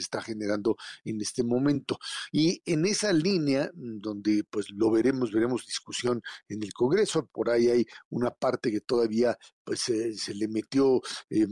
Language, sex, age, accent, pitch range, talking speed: Spanish, male, 50-69, Mexican, 110-130 Hz, 160 wpm